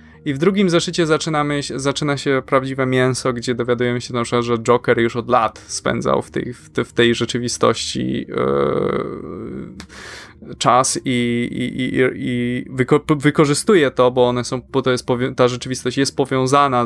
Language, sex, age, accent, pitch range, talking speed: Polish, male, 20-39, native, 125-150 Hz, 150 wpm